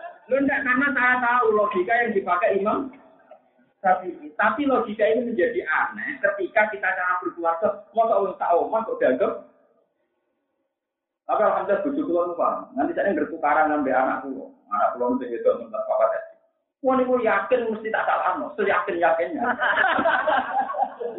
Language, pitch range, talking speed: Indonesian, 205-310 Hz, 130 wpm